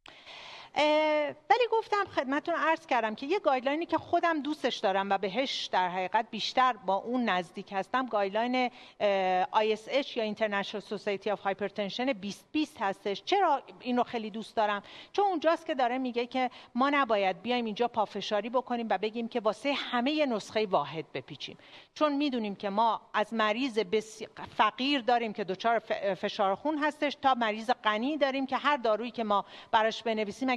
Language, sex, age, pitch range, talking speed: Persian, female, 50-69, 205-280 Hz, 160 wpm